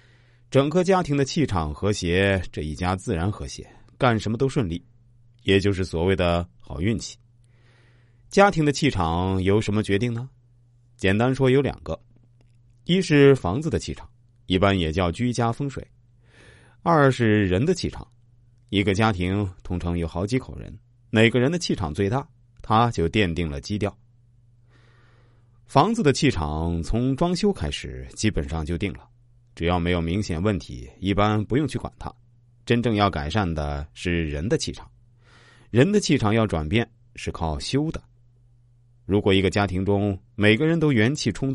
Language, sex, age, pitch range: Chinese, male, 30-49, 90-120 Hz